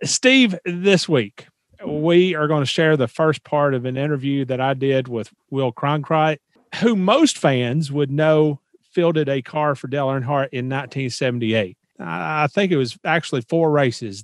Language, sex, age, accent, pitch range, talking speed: English, male, 40-59, American, 130-165 Hz, 170 wpm